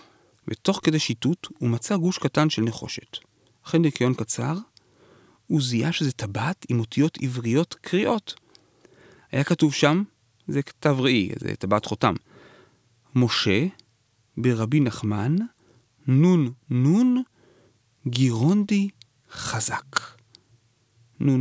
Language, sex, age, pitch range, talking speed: Hebrew, male, 40-59, 115-165 Hz, 105 wpm